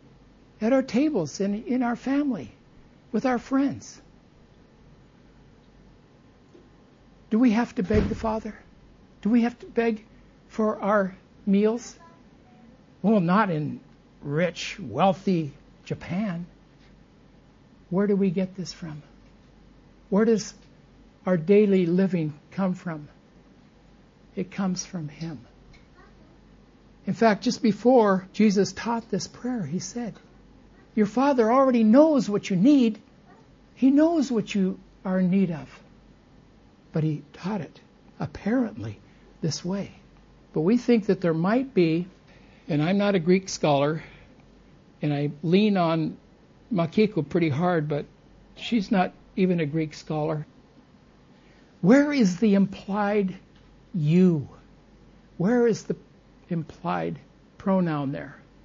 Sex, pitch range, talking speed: male, 170-225 Hz, 120 wpm